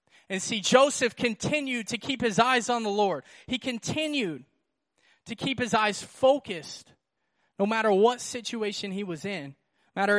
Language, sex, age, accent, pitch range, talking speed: English, male, 20-39, American, 190-225 Hz, 160 wpm